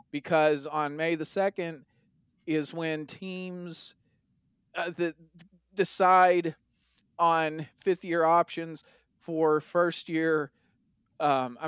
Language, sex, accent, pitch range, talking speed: English, male, American, 155-200 Hz, 90 wpm